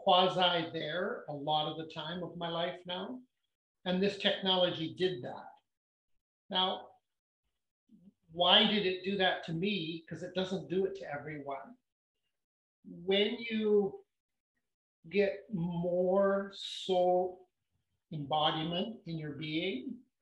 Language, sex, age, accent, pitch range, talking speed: English, male, 50-69, American, 160-190 Hz, 120 wpm